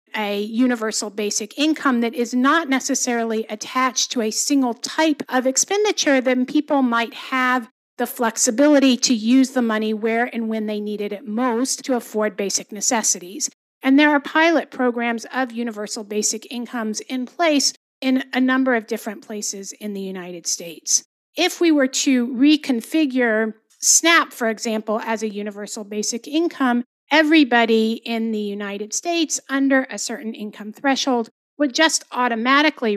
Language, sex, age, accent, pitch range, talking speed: English, female, 50-69, American, 220-275 Hz, 150 wpm